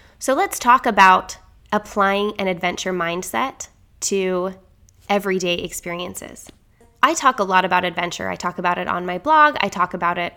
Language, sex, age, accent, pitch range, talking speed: English, female, 20-39, American, 185-220 Hz, 160 wpm